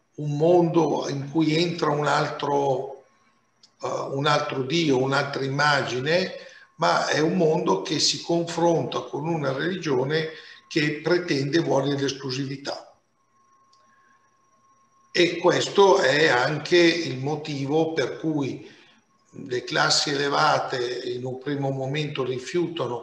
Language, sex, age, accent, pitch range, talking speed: Italian, male, 50-69, native, 135-170 Hz, 110 wpm